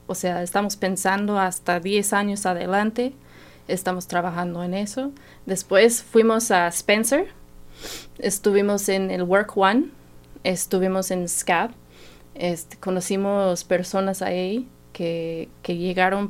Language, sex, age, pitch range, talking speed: English, female, 20-39, 175-205 Hz, 115 wpm